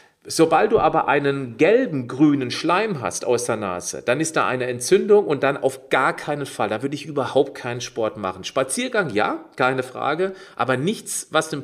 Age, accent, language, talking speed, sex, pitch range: 40-59, German, German, 190 wpm, male, 125-160 Hz